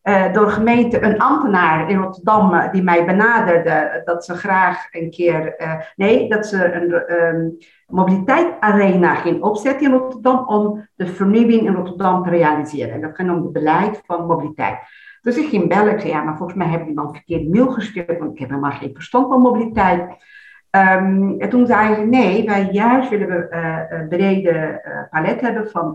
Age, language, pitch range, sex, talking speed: 50-69, Dutch, 170-225 Hz, female, 195 wpm